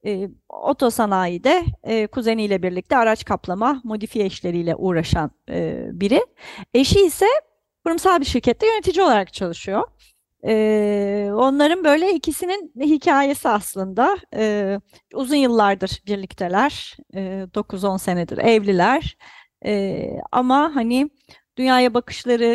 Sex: female